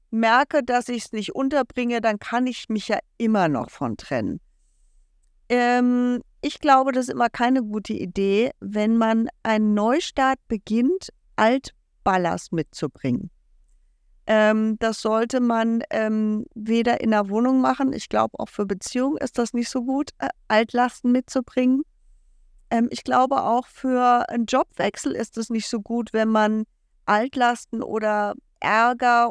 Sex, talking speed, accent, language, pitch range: female, 145 wpm, German, German, 210-250 Hz